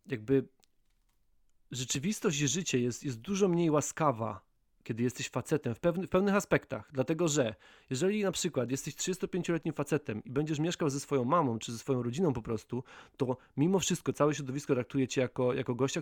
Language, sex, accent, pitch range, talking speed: Polish, male, native, 125-170 Hz, 175 wpm